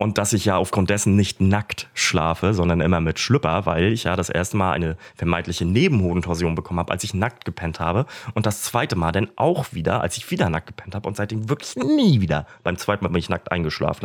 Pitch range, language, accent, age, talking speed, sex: 90-125 Hz, German, German, 30-49, 230 wpm, male